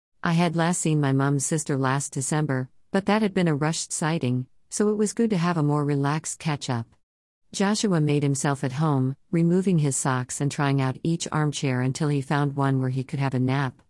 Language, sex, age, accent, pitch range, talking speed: English, female, 50-69, American, 130-165 Hz, 215 wpm